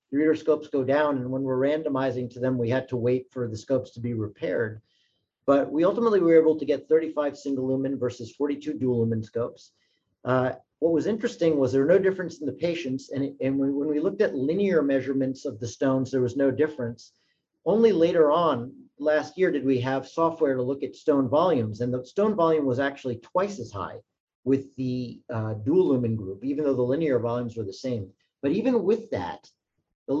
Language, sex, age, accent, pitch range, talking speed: English, male, 40-59, American, 125-155 Hz, 205 wpm